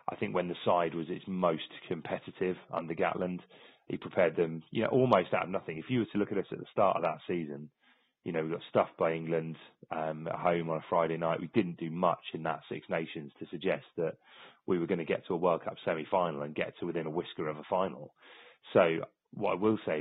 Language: English